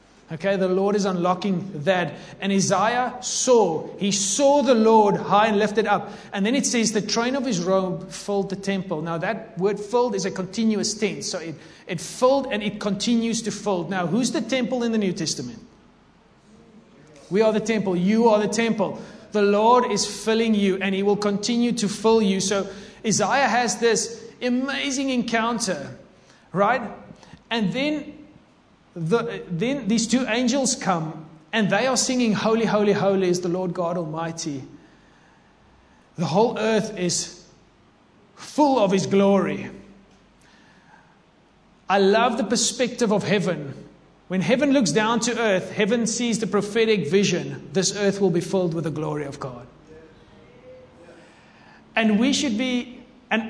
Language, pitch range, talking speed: English, 190-230 Hz, 155 wpm